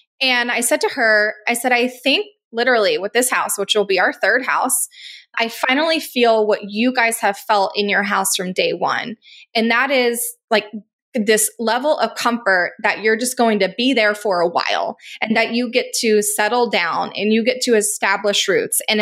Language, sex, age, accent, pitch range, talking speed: English, female, 20-39, American, 210-250 Hz, 205 wpm